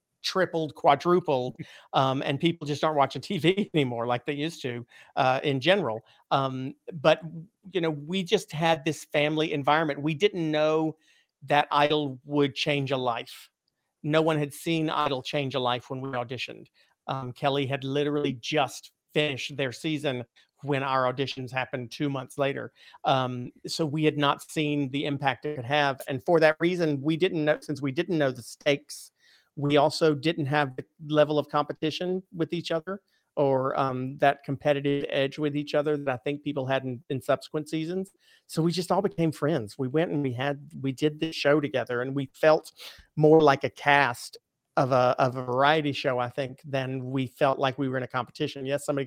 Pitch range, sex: 135-155 Hz, male